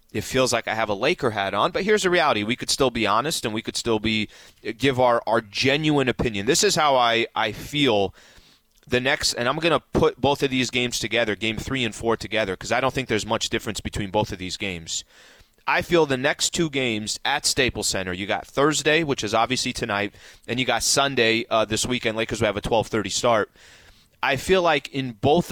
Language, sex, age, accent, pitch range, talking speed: English, male, 30-49, American, 110-140 Hz, 230 wpm